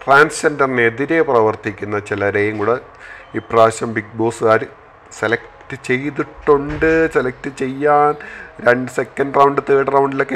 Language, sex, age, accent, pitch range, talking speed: Malayalam, male, 30-49, native, 105-140 Hz, 95 wpm